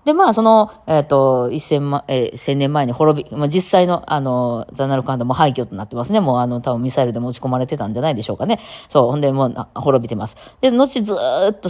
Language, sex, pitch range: Japanese, female, 125-185 Hz